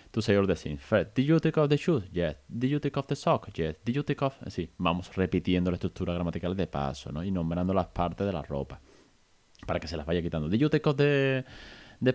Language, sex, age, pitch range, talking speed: Spanish, male, 30-49, 85-130 Hz, 235 wpm